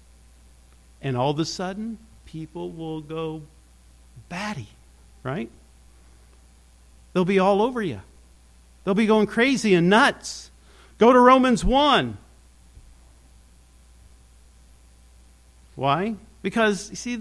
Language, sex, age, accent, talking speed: English, male, 50-69, American, 100 wpm